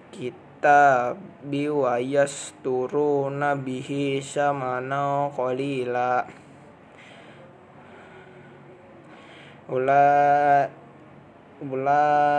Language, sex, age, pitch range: Indonesian, male, 20-39, 130-145 Hz